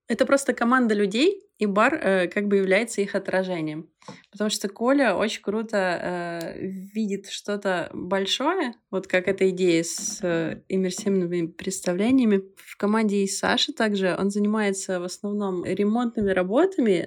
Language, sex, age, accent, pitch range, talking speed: Russian, female, 20-39, native, 185-220 Hz, 135 wpm